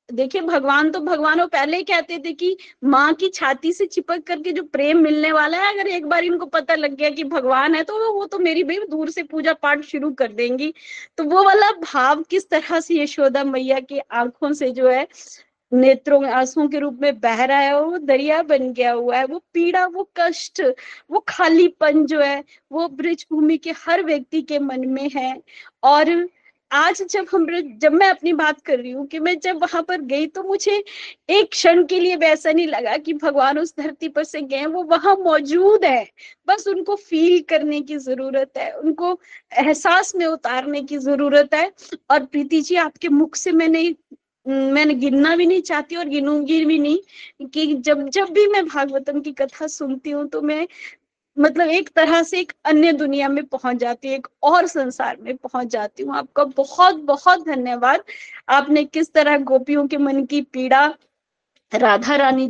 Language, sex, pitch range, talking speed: Hindi, female, 275-340 Hz, 185 wpm